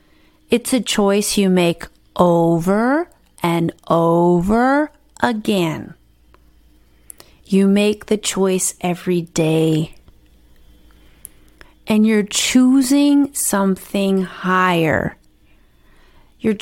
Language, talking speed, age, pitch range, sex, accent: English, 75 wpm, 30-49, 175-220 Hz, female, American